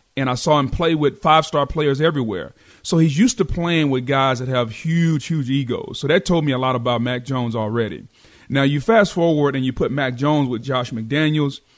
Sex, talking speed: male, 220 wpm